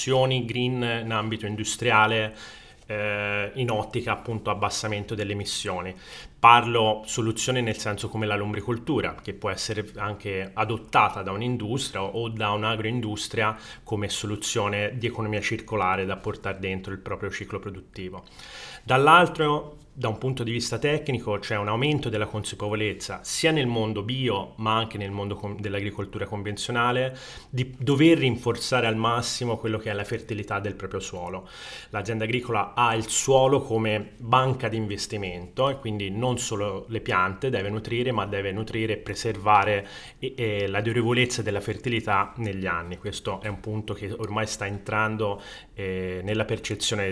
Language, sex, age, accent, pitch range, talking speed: Italian, male, 30-49, native, 100-120 Hz, 145 wpm